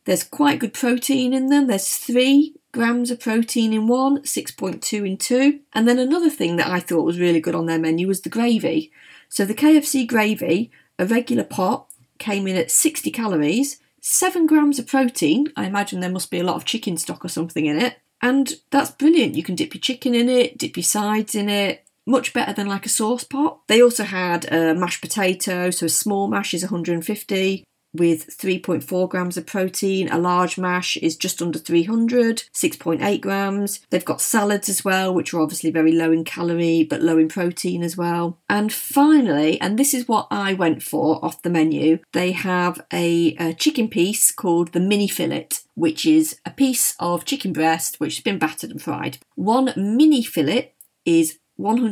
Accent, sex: British, female